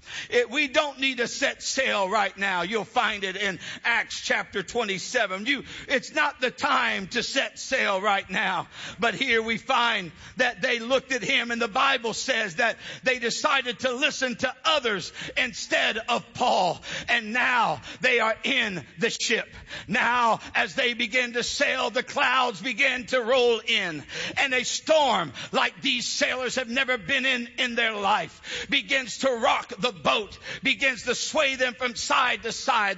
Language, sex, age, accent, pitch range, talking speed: English, male, 60-79, American, 230-270 Hz, 165 wpm